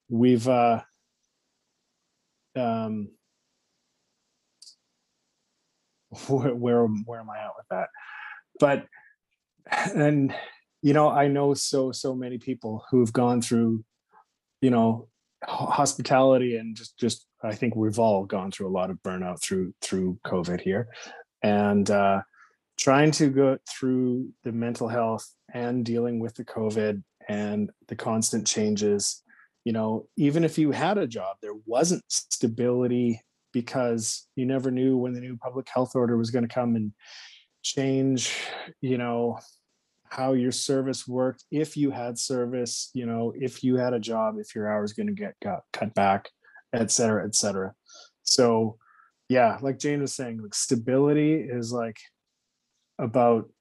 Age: 30-49